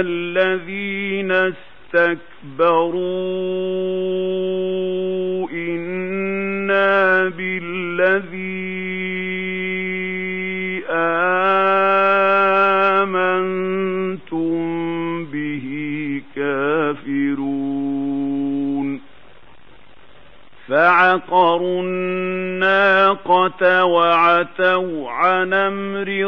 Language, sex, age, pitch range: Arabic, male, 50-69, 150-185 Hz